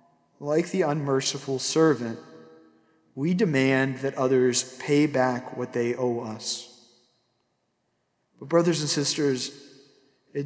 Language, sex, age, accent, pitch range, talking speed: English, male, 40-59, American, 140-185 Hz, 110 wpm